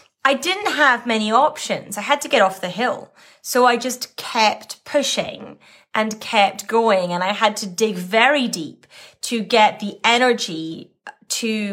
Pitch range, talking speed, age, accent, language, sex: 195-245 Hz, 165 wpm, 20-39, British, English, female